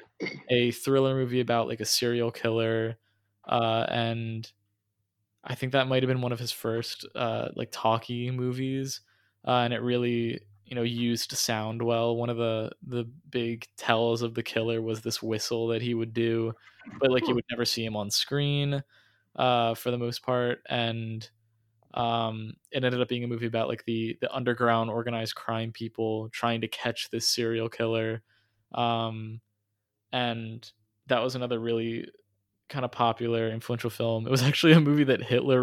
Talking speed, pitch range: 175 wpm, 115-125 Hz